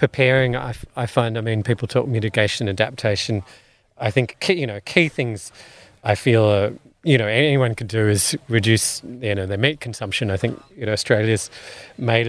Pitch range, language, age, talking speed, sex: 105-130 Hz, English, 30-49, 190 wpm, male